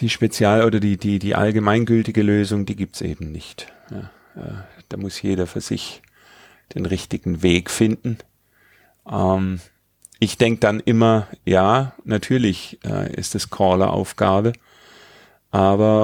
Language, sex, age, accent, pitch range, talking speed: German, male, 40-59, German, 95-110 Hz, 130 wpm